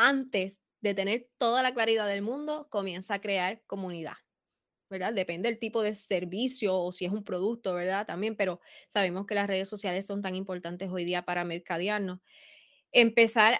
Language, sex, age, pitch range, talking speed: Spanish, female, 10-29, 195-235 Hz, 170 wpm